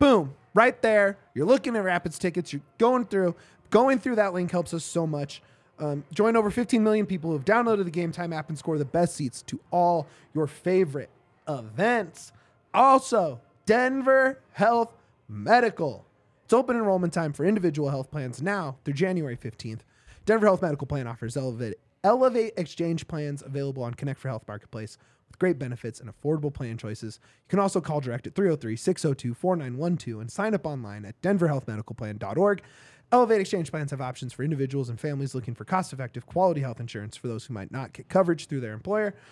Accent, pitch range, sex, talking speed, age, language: American, 125-185 Hz, male, 180 wpm, 20-39, English